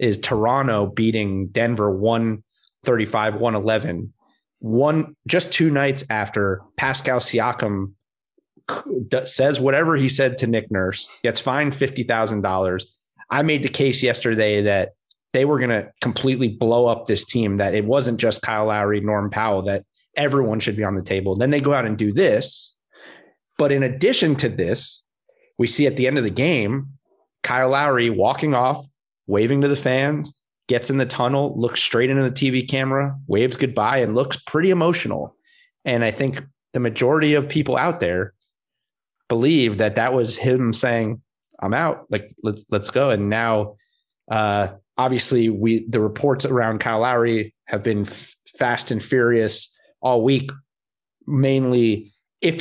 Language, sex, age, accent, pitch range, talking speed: English, male, 30-49, American, 110-135 Hz, 155 wpm